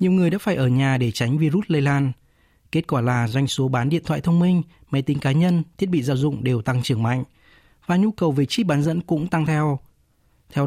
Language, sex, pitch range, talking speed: Vietnamese, male, 130-170 Hz, 245 wpm